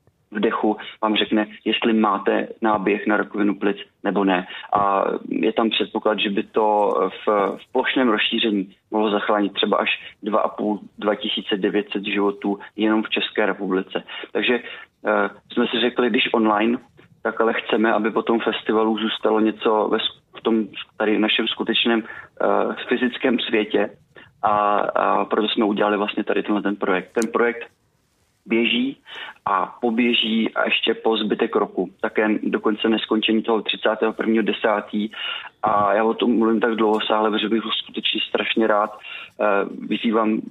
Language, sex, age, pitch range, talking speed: Czech, male, 30-49, 105-115 Hz, 145 wpm